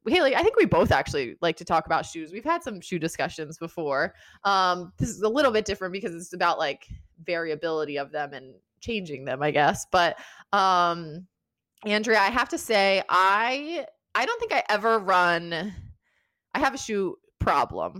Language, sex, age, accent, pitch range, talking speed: English, female, 20-39, American, 165-220 Hz, 185 wpm